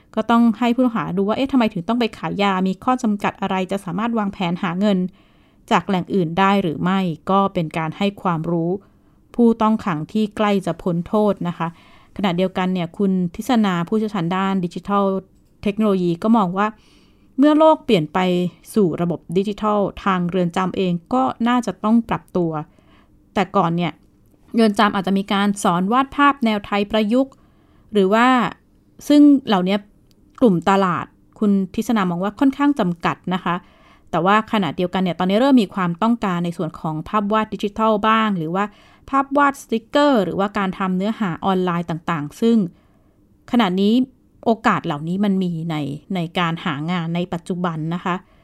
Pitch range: 175-220 Hz